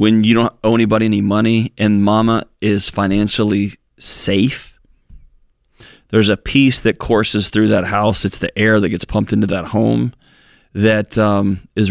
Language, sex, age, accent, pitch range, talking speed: English, male, 30-49, American, 100-115 Hz, 160 wpm